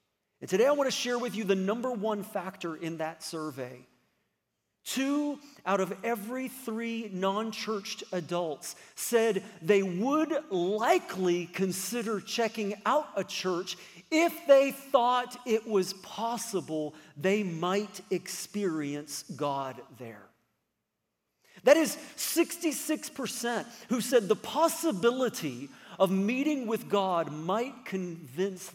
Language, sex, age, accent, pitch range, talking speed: English, male, 40-59, American, 175-245 Hz, 115 wpm